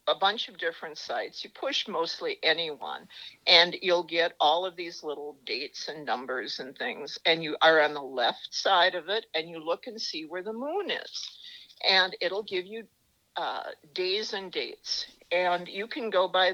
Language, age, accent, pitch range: English, 60-79, American, 165-250 Hz